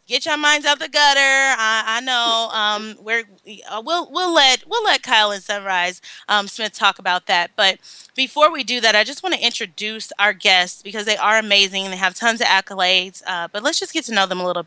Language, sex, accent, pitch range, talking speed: English, female, American, 185-230 Hz, 215 wpm